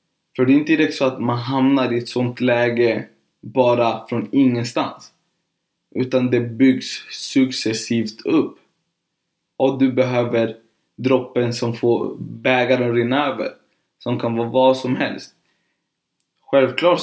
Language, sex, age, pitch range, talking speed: Swedish, male, 20-39, 115-140 Hz, 130 wpm